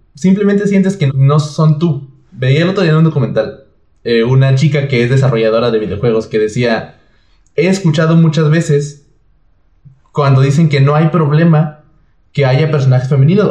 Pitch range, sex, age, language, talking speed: 130-155 Hz, male, 20-39, Spanish, 165 wpm